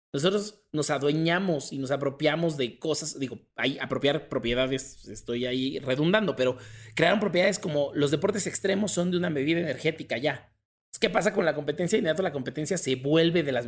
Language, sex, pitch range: Spanish, male, 140-185 Hz